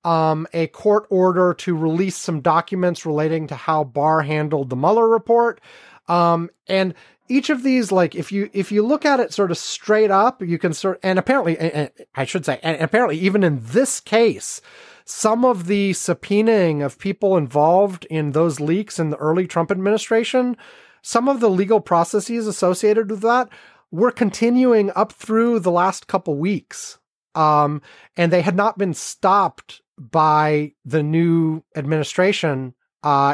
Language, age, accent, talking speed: English, 30-49, American, 165 wpm